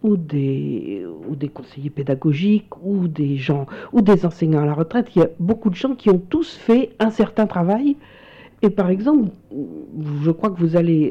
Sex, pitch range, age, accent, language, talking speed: female, 145-205 Hz, 60-79, French, English, 195 wpm